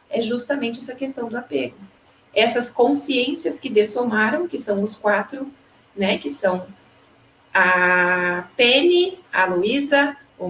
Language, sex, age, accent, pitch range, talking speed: Portuguese, female, 30-49, Brazilian, 200-265 Hz, 125 wpm